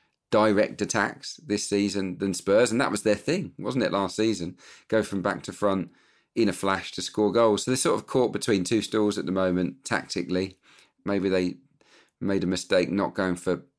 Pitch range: 90-105 Hz